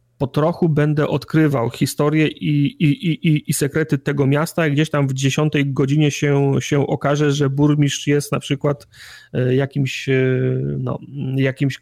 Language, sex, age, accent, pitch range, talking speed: Polish, male, 30-49, native, 140-155 Hz, 135 wpm